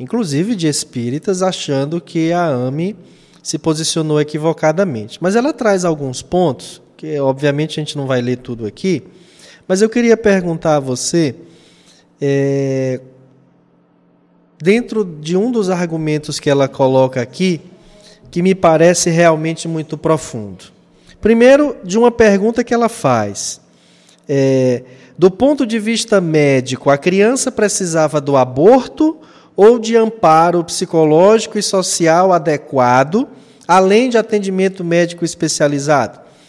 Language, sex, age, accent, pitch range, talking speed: Portuguese, male, 20-39, Brazilian, 150-205 Hz, 120 wpm